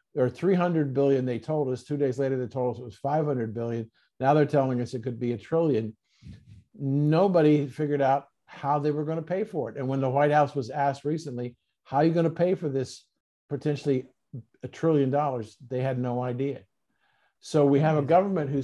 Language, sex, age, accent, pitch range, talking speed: English, male, 50-69, American, 125-150 Hz, 215 wpm